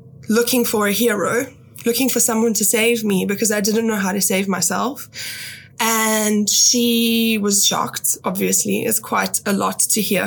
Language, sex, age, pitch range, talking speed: English, female, 10-29, 205-250 Hz, 170 wpm